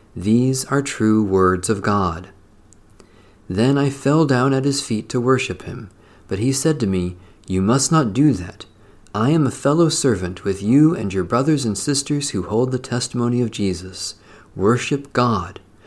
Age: 40-59